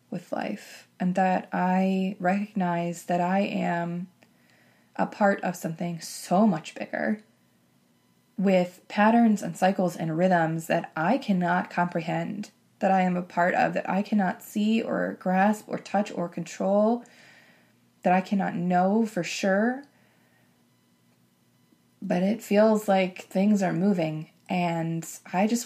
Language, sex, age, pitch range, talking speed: English, female, 20-39, 175-205 Hz, 135 wpm